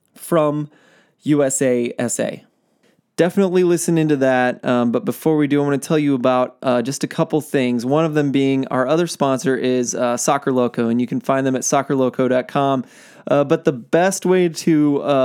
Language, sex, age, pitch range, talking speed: English, male, 20-39, 125-150 Hz, 185 wpm